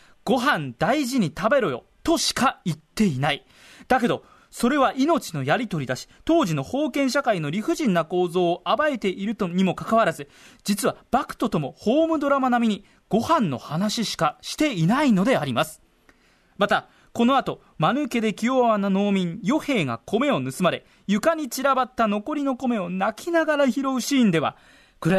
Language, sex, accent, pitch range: Japanese, male, native, 175-265 Hz